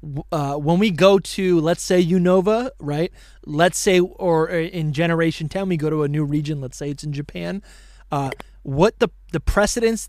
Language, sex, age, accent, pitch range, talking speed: English, male, 20-39, American, 145-175 Hz, 185 wpm